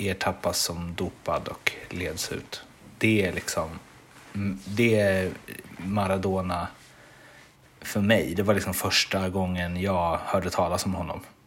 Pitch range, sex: 95-115 Hz, male